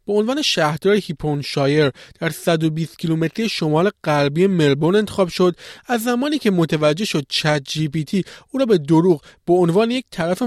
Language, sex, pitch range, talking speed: Persian, male, 160-215 Hz, 170 wpm